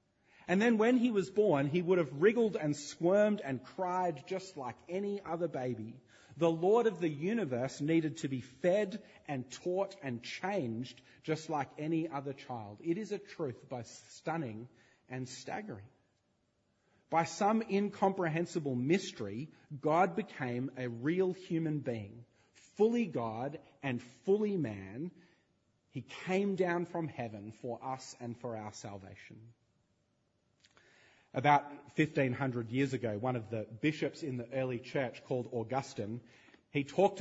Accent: Australian